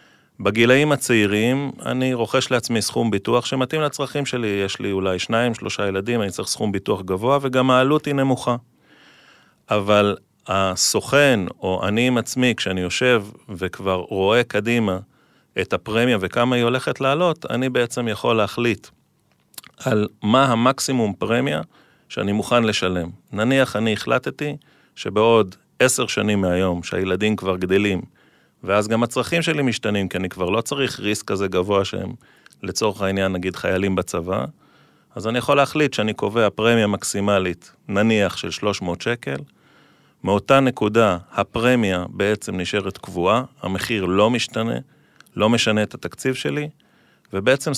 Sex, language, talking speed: male, Hebrew, 135 wpm